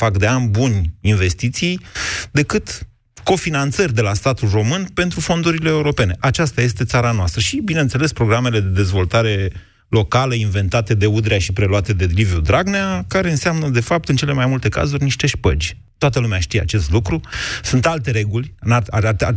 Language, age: Romanian, 30-49